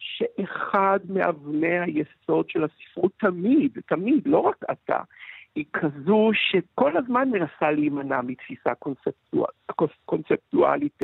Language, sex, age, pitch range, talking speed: Hebrew, male, 60-79, 145-210 Hz, 105 wpm